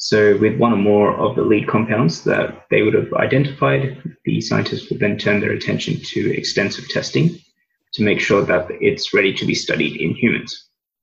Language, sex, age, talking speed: English, male, 20-39, 190 wpm